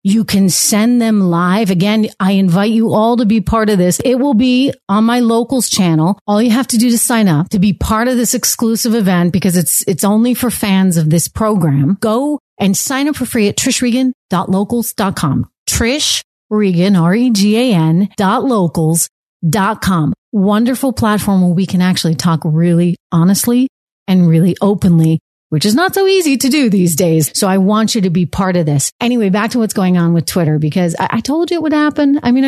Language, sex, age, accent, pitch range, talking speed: English, female, 30-49, American, 175-235 Hz, 195 wpm